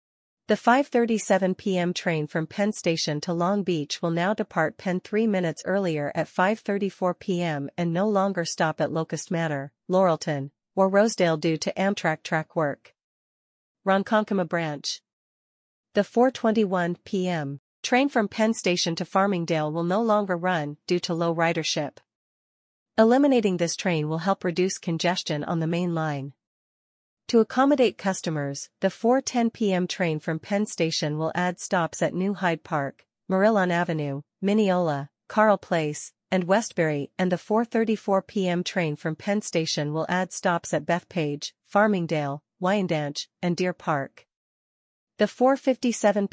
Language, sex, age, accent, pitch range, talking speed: English, female, 40-59, American, 160-200 Hz, 140 wpm